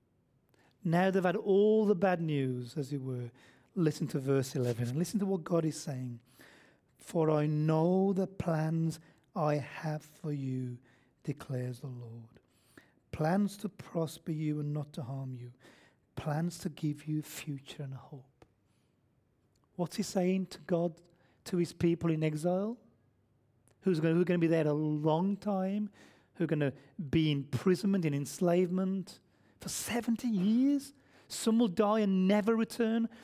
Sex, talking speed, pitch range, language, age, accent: male, 150 wpm, 140-210 Hz, English, 40-59, British